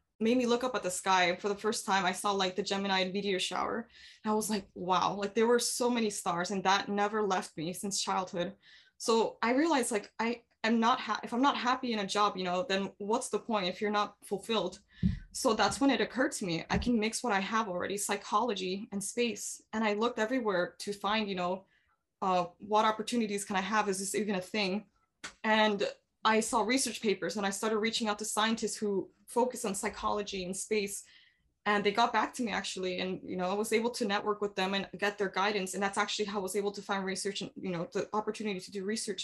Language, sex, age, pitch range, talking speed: English, female, 20-39, 195-225 Hz, 235 wpm